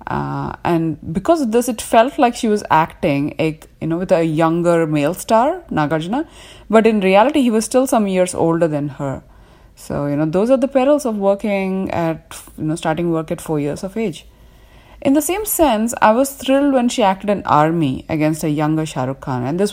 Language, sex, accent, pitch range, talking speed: Hindi, female, native, 160-220 Hz, 205 wpm